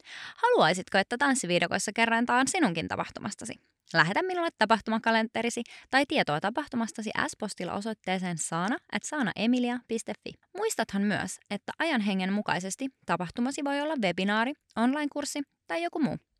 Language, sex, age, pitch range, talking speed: Finnish, female, 20-39, 180-255 Hz, 115 wpm